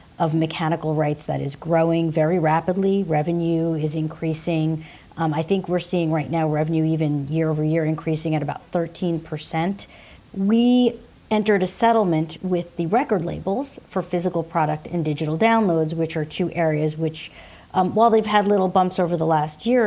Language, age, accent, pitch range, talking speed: English, 40-59, American, 155-180 Hz, 170 wpm